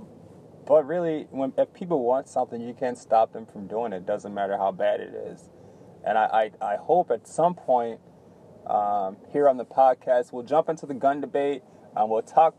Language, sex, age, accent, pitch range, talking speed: English, male, 20-39, American, 115-145 Hz, 205 wpm